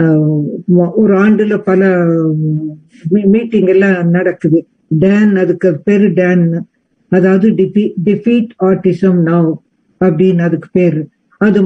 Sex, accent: female, native